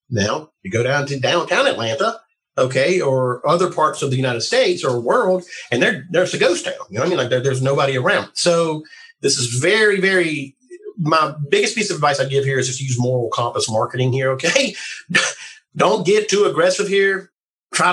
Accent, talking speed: American, 200 wpm